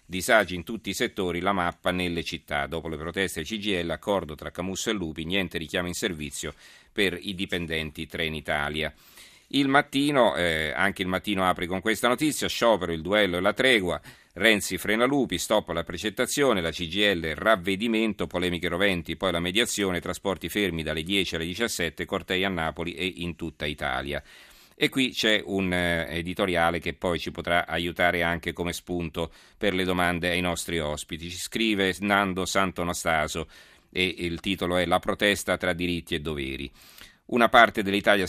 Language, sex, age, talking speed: Italian, male, 40-59, 170 wpm